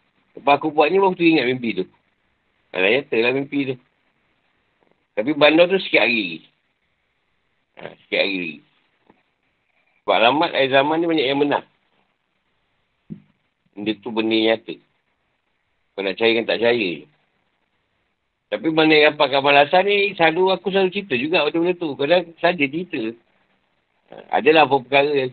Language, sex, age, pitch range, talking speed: Malay, male, 60-79, 115-165 Hz, 140 wpm